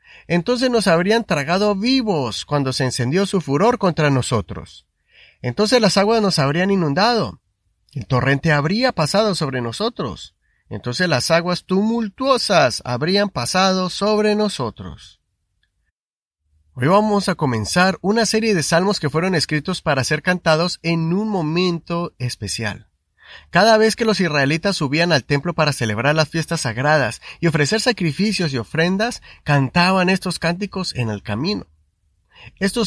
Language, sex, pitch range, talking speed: Spanish, male, 130-195 Hz, 135 wpm